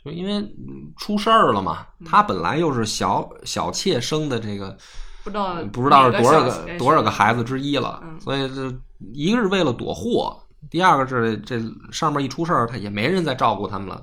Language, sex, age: Chinese, male, 20-39